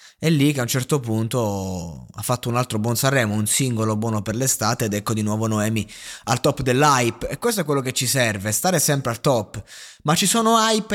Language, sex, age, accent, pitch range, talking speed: Italian, male, 20-39, native, 110-145 Hz, 225 wpm